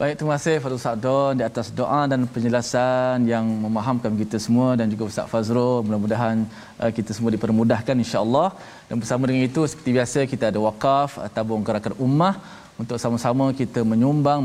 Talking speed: 160 wpm